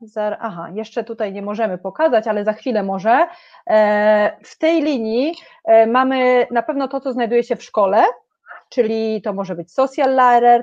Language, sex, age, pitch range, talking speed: Polish, female, 30-49, 205-255 Hz, 160 wpm